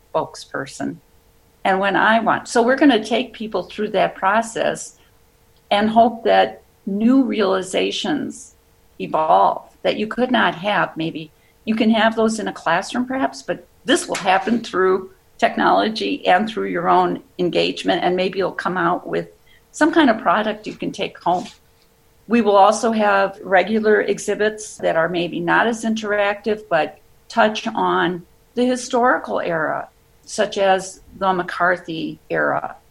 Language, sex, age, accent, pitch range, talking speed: English, female, 50-69, American, 175-225 Hz, 150 wpm